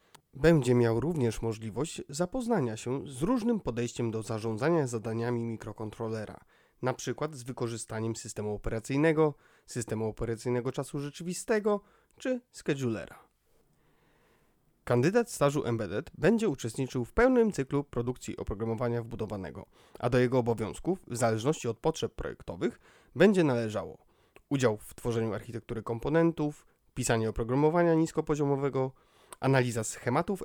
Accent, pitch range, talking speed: native, 115-155 Hz, 110 wpm